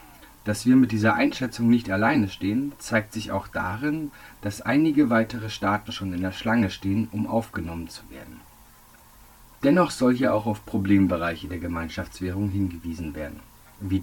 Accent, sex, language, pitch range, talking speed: German, male, German, 95-120 Hz, 155 wpm